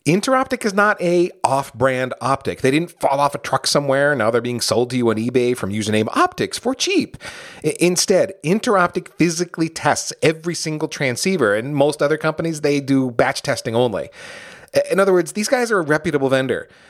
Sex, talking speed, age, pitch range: male, 180 wpm, 40-59, 115-165 Hz